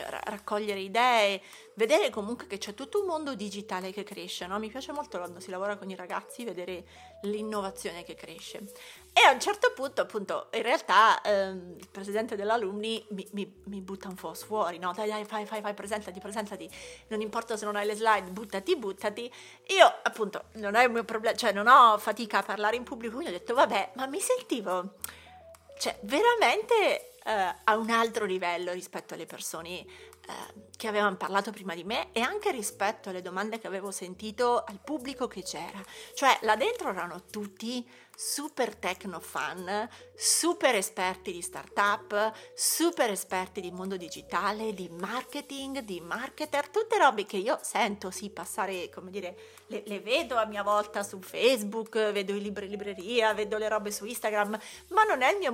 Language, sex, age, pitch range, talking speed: Italian, female, 30-49, 195-260 Hz, 180 wpm